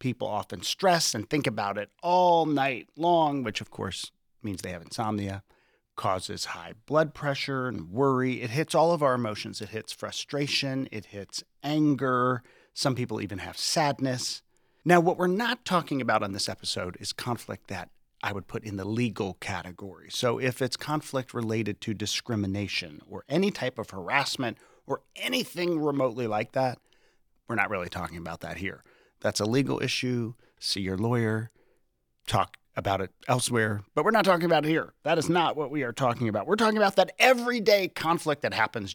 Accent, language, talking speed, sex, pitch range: American, English, 180 wpm, male, 105-150 Hz